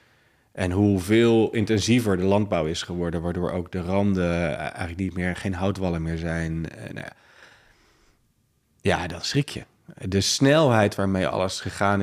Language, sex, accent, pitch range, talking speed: Dutch, male, Dutch, 90-110 Hz, 145 wpm